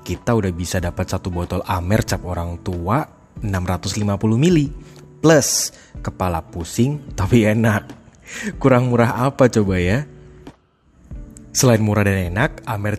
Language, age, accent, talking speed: Indonesian, 20-39, native, 125 wpm